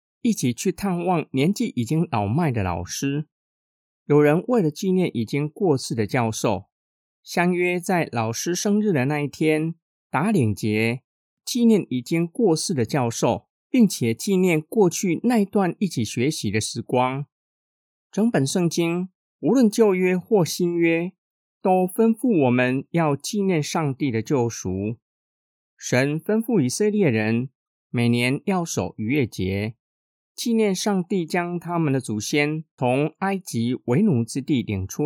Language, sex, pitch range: Chinese, male, 125-185 Hz